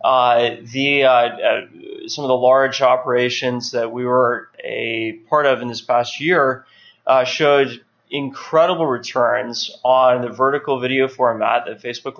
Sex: male